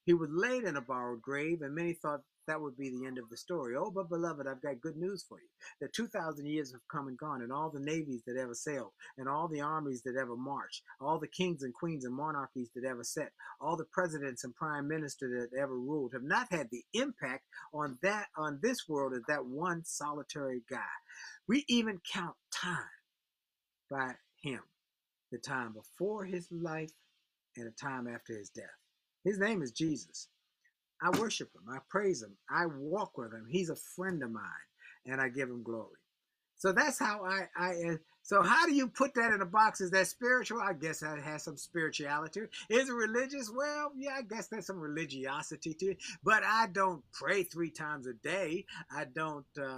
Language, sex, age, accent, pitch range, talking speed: English, male, 50-69, American, 135-190 Hz, 205 wpm